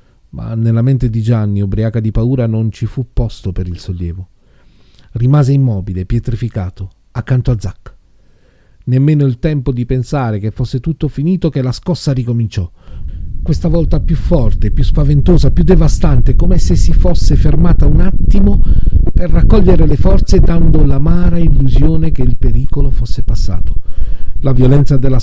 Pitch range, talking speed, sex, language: 110-140 Hz, 150 wpm, male, Italian